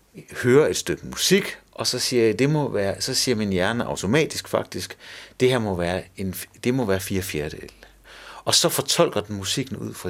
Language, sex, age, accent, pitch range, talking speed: Danish, male, 60-79, native, 100-145 Hz, 200 wpm